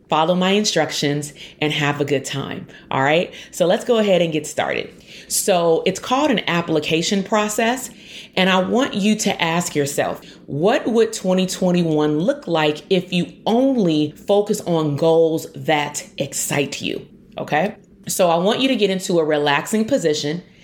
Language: English